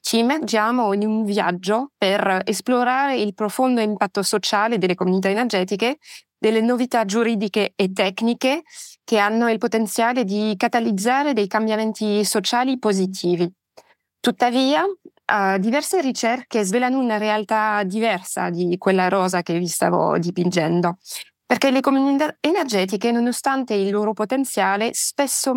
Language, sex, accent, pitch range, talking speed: English, female, Italian, 195-235 Hz, 120 wpm